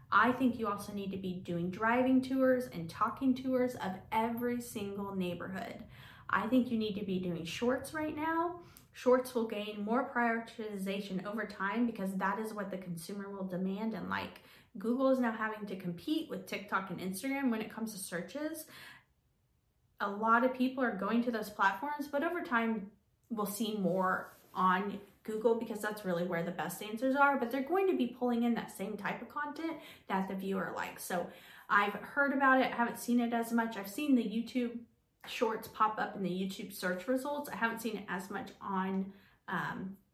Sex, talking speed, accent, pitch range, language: female, 195 wpm, American, 195-245 Hz, English